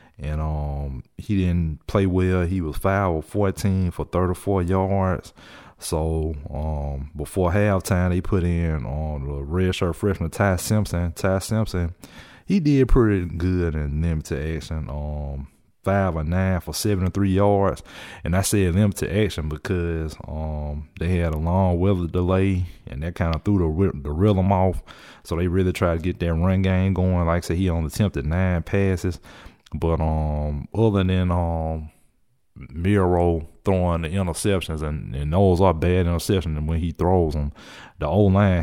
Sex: male